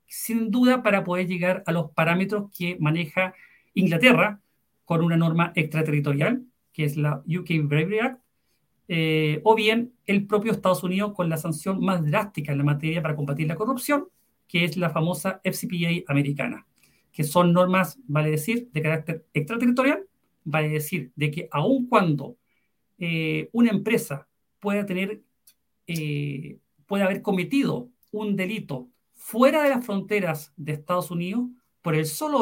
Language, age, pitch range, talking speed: Spanish, 40-59, 160-215 Hz, 150 wpm